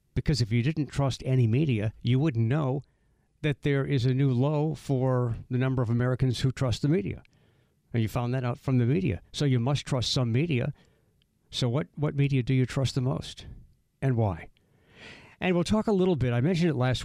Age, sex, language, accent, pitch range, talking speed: 60-79, male, English, American, 115-145 Hz, 210 wpm